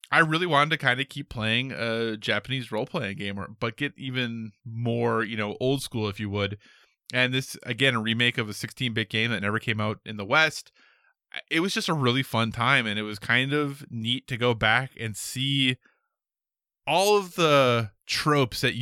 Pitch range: 115-155 Hz